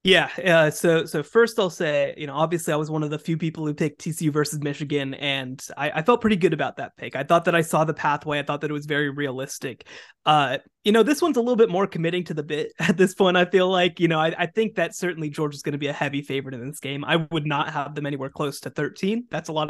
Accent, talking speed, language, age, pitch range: American, 285 wpm, English, 20-39, 145-180 Hz